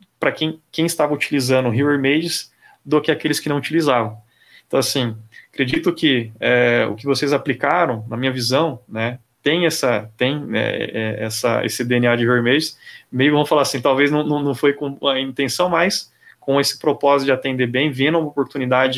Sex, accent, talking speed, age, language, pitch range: male, Brazilian, 185 wpm, 20-39, Portuguese, 125-150 Hz